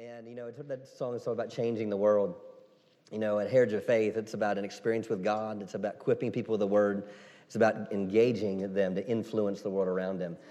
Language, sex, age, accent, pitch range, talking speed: English, male, 30-49, American, 100-120 Hz, 225 wpm